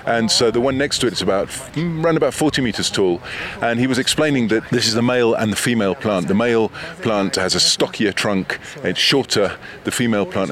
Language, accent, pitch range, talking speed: Spanish, British, 100-125 Hz, 220 wpm